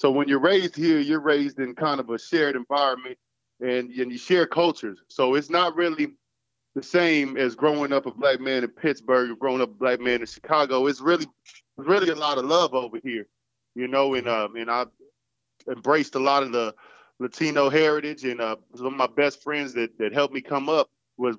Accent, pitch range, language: American, 125-155 Hz, English